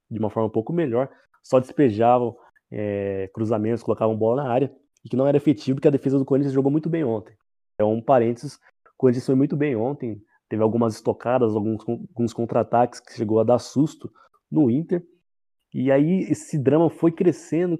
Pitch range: 115-145 Hz